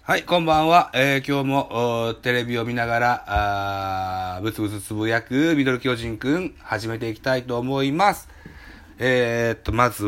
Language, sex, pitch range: Japanese, male, 90-140 Hz